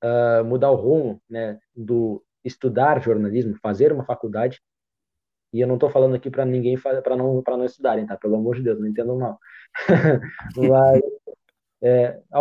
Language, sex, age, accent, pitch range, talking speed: Portuguese, male, 20-39, Brazilian, 120-150 Hz, 170 wpm